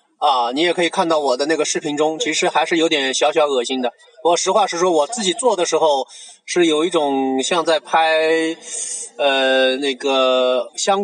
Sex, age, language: male, 20-39, Chinese